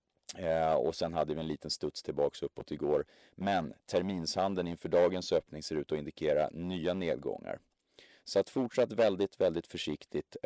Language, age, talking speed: Swedish, 30-49, 155 wpm